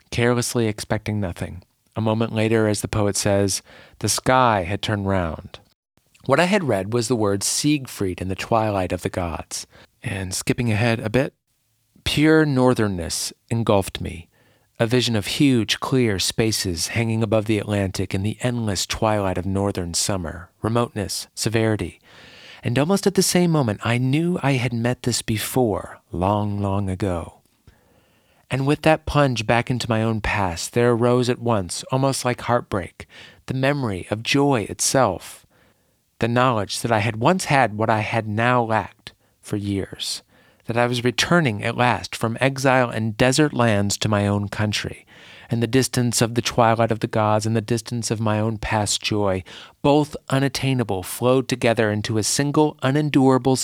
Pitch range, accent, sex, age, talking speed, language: 100-125 Hz, American, male, 40-59, 165 wpm, English